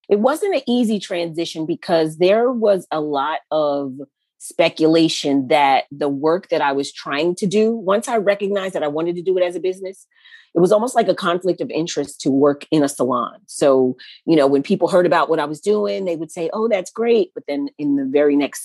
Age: 40-59